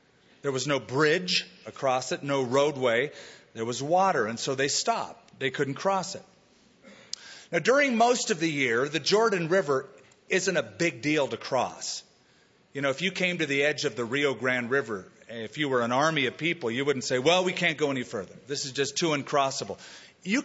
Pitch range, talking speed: 135-180 Hz, 205 wpm